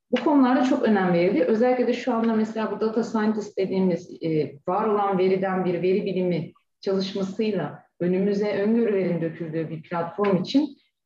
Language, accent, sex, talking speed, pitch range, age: Turkish, native, female, 140 wpm, 180-240 Hz, 30-49